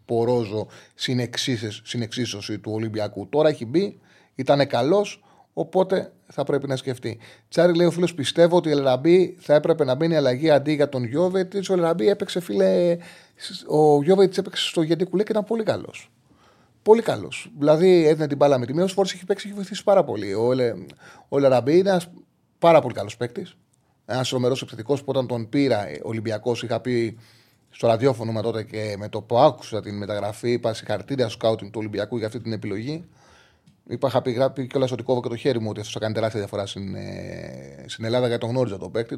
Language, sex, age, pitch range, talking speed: Greek, male, 30-49, 115-165 Hz, 185 wpm